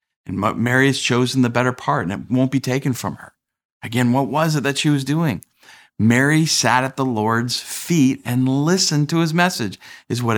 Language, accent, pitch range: English, American, 95-130 Hz